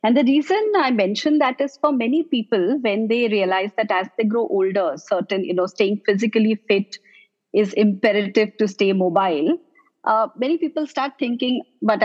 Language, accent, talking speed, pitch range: English, Indian, 175 wpm, 195-260 Hz